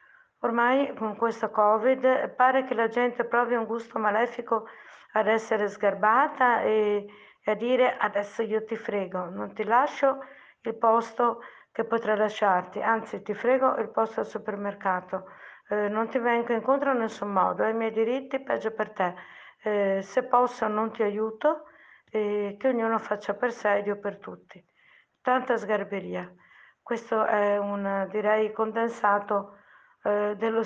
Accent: native